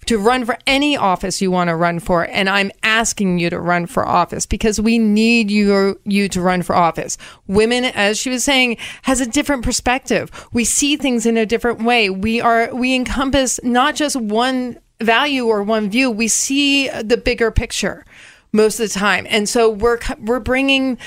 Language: English